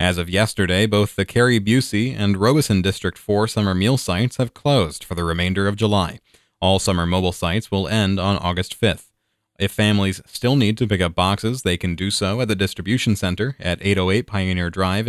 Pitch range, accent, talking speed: 95-115 Hz, American, 200 wpm